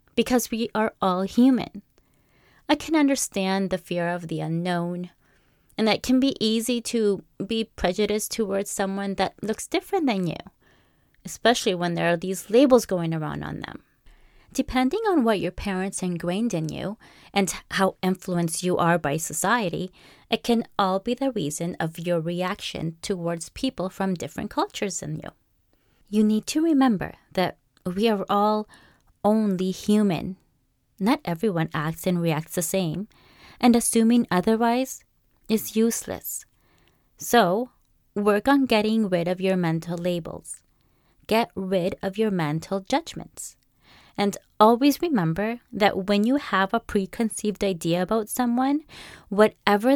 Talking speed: 145 wpm